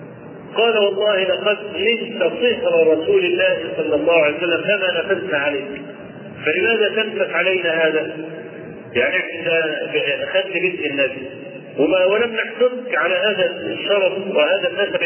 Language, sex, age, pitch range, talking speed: Arabic, male, 50-69, 165-250 Hz, 125 wpm